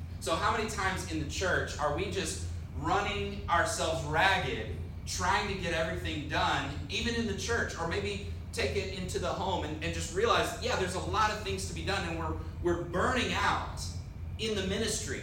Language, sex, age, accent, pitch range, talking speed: English, male, 30-49, American, 85-95 Hz, 195 wpm